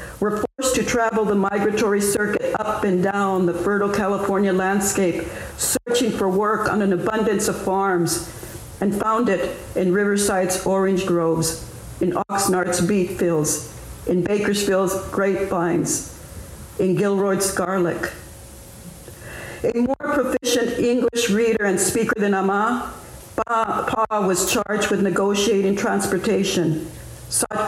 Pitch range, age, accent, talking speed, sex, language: 185-220 Hz, 60-79, American, 120 wpm, female, English